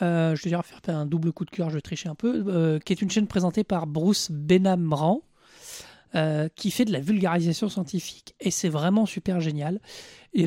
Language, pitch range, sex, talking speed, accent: French, 160-190 Hz, male, 205 wpm, French